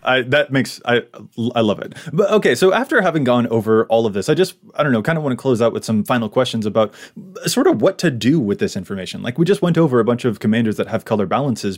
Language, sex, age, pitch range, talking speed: English, male, 20-39, 110-155 Hz, 270 wpm